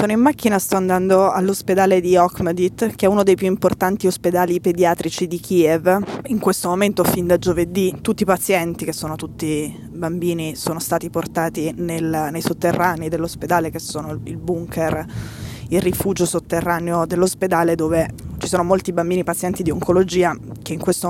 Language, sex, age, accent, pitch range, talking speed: Italian, female, 20-39, native, 165-185 Hz, 160 wpm